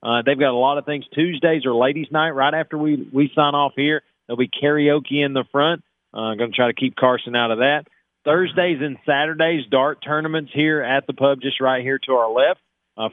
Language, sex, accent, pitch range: English, male, American, 120-150 Hz